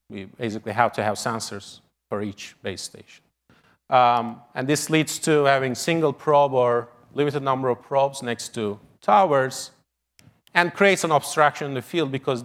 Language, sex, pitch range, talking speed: English, male, 115-155 Hz, 165 wpm